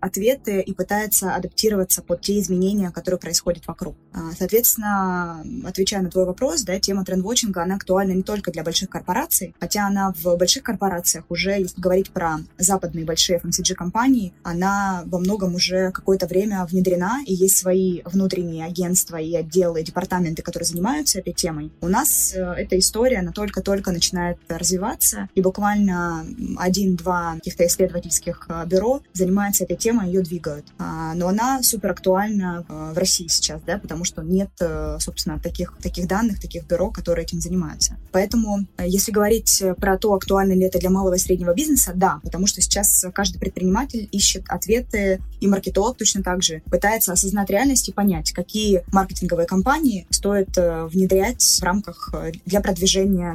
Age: 20-39